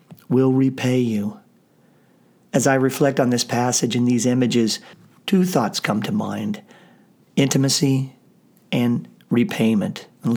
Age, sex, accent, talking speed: 40-59, male, American, 120 wpm